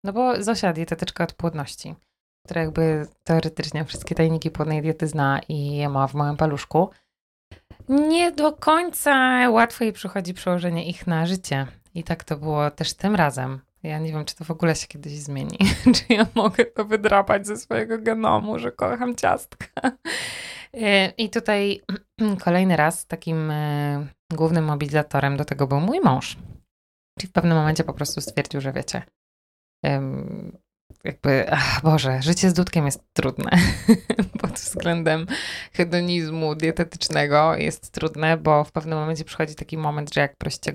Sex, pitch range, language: female, 145-180 Hz, Polish